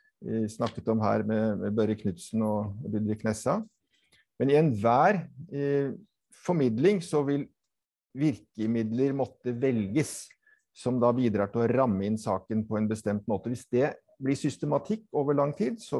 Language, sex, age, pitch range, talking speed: English, male, 50-69, 110-150 Hz, 145 wpm